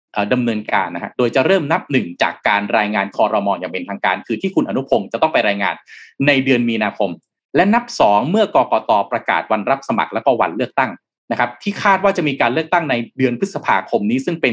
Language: Thai